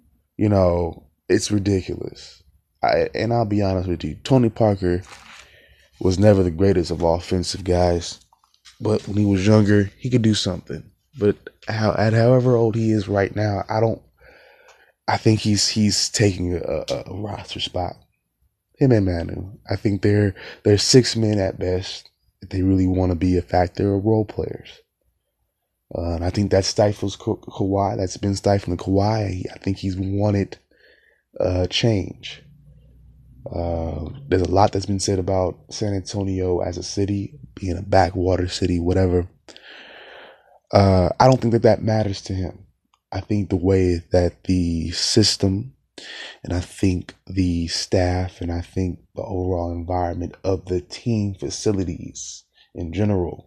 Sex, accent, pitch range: male, American, 90-105 Hz